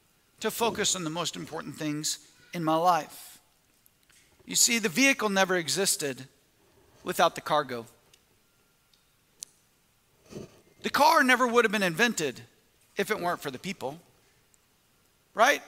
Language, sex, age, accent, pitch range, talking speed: English, male, 40-59, American, 180-225 Hz, 125 wpm